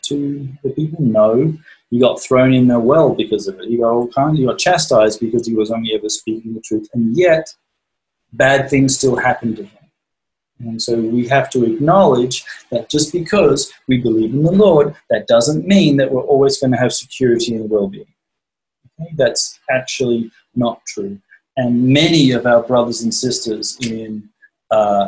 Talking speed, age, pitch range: 185 wpm, 30-49, 110-140 Hz